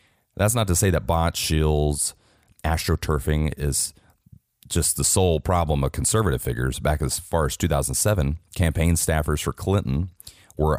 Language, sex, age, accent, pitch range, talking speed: English, male, 30-49, American, 75-95 Hz, 145 wpm